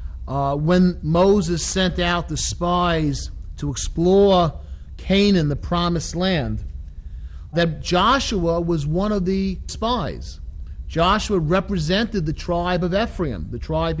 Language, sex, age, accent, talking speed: English, male, 40-59, American, 120 wpm